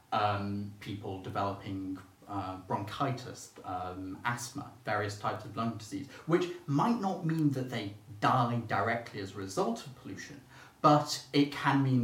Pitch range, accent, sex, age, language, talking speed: 100-135 Hz, British, male, 30-49, English, 145 wpm